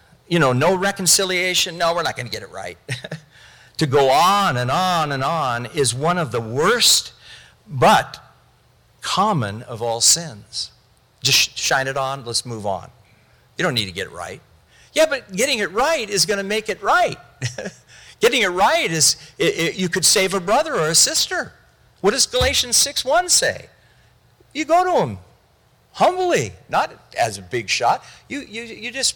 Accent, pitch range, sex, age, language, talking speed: American, 125-210 Hz, male, 50-69, English, 180 wpm